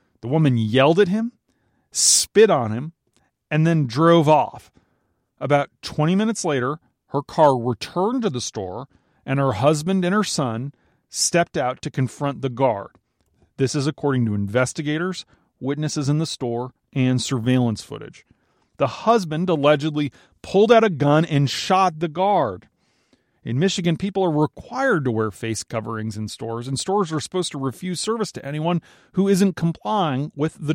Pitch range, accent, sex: 125-170 Hz, American, male